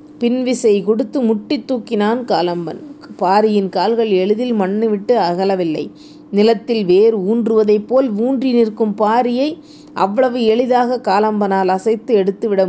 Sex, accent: female, native